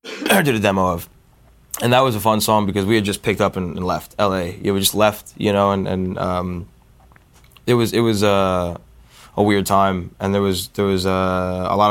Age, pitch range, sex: 20-39, 90-110 Hz, male